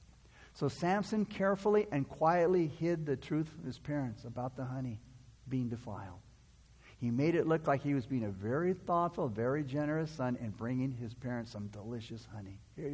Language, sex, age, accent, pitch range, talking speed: English, male, 60-79, American, 120-170 Hz, 175 wpm